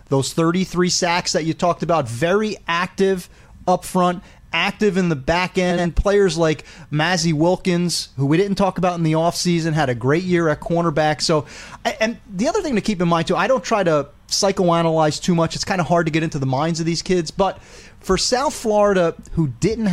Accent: American